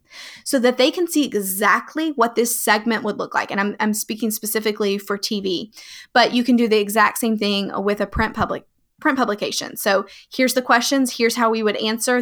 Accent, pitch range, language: American, 210-255 Hz, English